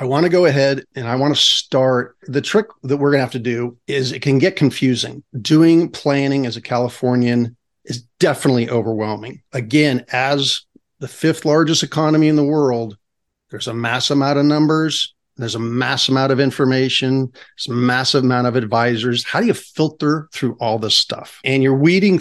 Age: 40-59